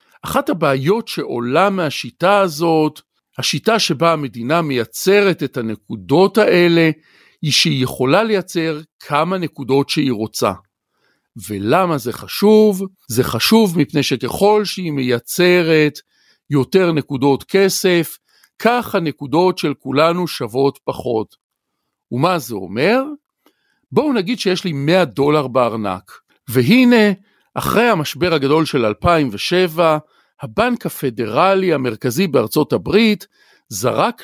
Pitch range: 140-200 Hz